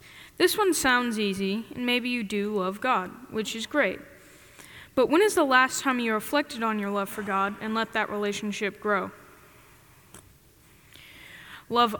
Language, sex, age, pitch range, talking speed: English, female, 10-29, 200-255 Hz, 160 wpm